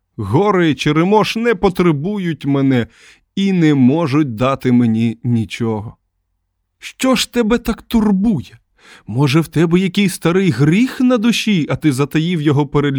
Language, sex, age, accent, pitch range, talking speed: Ukrainian, male, 20-39, native, 120-175 Hz, 140 wpm